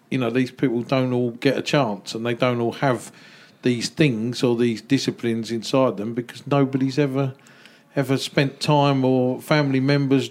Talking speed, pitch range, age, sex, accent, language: 175 wpm, 120-135 Hz, 40-59, male, British, English